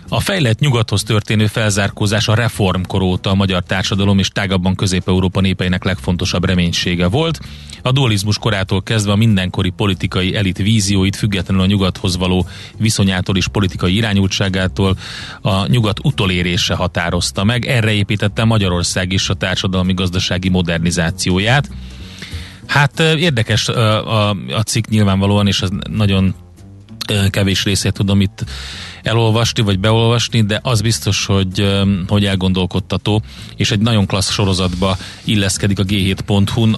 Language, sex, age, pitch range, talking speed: Hungarian, male, 30-49, 95-105 Hz, 125 wpm